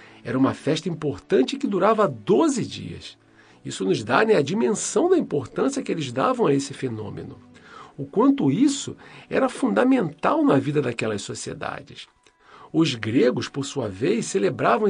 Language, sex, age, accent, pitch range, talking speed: Portuguese, male, 50-69, Brazilian, 140-225 Hz, 150 wpm